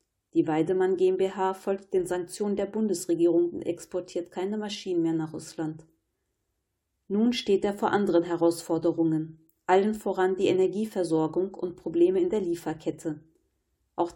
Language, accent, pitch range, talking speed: German, German, 165-195 Hz, 130 wpm